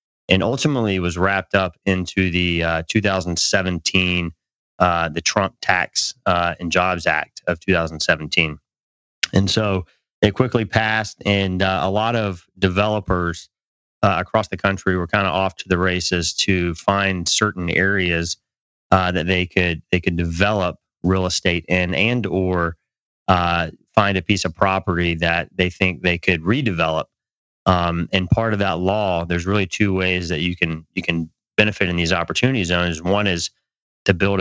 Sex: male